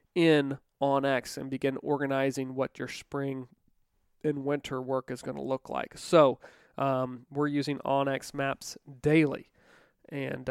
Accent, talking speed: American, 150 wpm